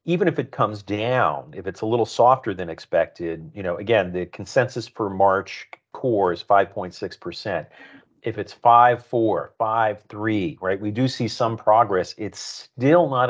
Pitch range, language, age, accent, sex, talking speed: 95-130 Hz, English, 40-59, American, male, 165 wpm